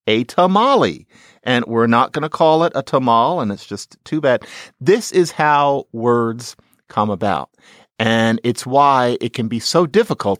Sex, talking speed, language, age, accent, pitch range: male, 175 wpm, English, 50-69, American, 110-150 Hz